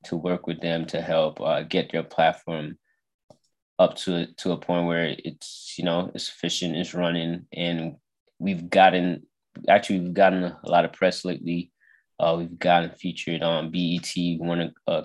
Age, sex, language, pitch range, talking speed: 20-39, male, English, 80-90 Hz, 175 wpm